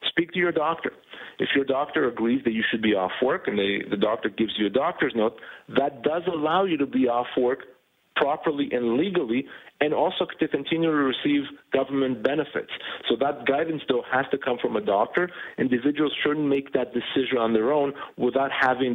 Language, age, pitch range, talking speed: English, 40-59, 115-140 Hz, 195 wpm